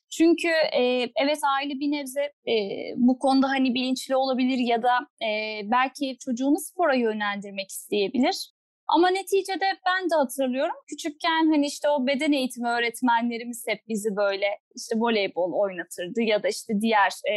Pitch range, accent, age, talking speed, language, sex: 220-295 Hz, native, 10-29, 135 wpm, Turkish, female